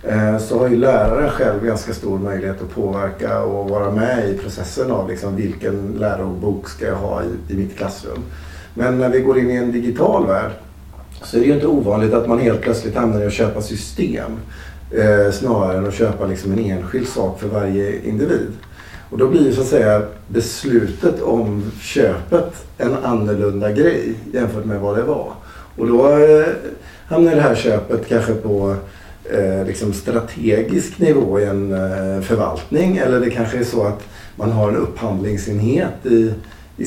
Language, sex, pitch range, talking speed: Swedish, male, 100-120 Hz, 175 wpm